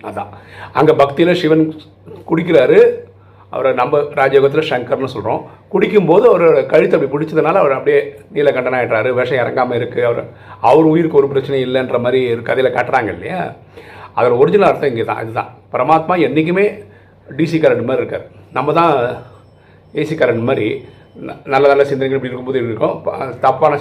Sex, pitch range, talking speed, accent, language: male, 115-190 Hz, 145 wpm, native, Tamil